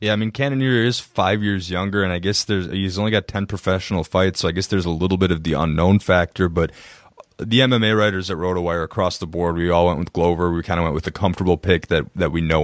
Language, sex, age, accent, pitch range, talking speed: English, male, 20-39, American, 90-105 Hz, 255 wpm